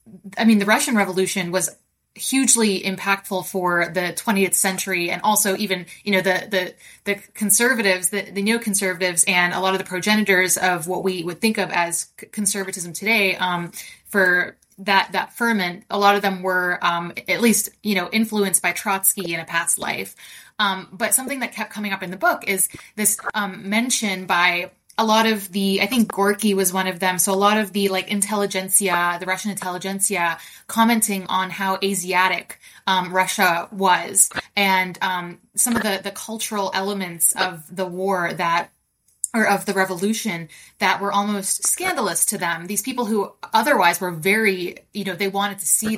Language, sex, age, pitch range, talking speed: English, female, 20-39, 185-210 Hz, 180 wpm